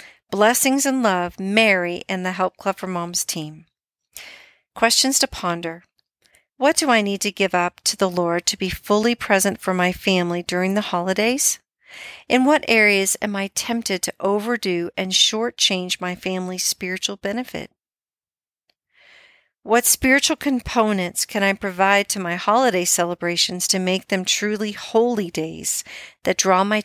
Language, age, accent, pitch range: English, 50-69, American, 180-230 Hz